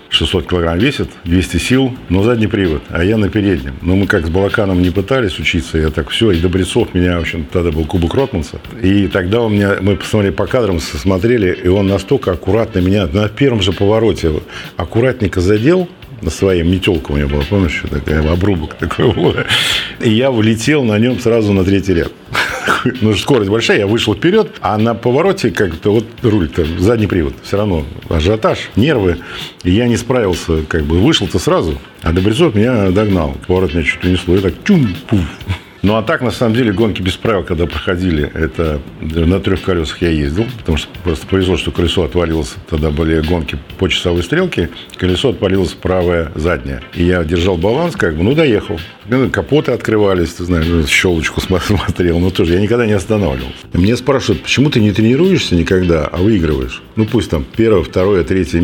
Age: 50-69